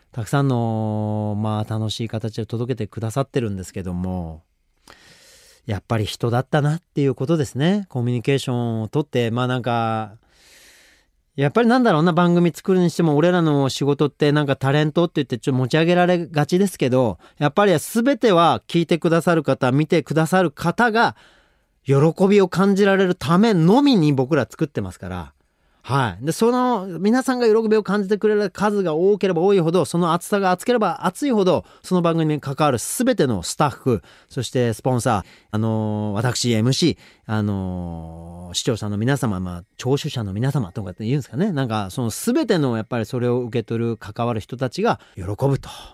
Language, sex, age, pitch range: Japanese, male, 30-49, 110-175 Hz